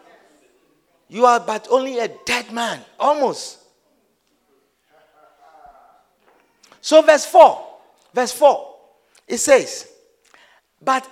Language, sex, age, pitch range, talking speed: English, male, 50-69, 240-360 Hz, 85 wpm